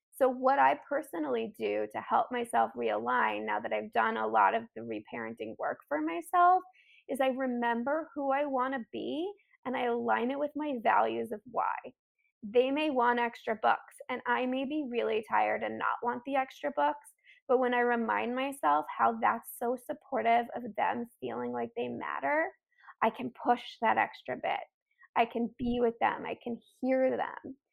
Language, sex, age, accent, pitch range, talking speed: English, female, 20-39, American, 235-300 Hz, 185 wpm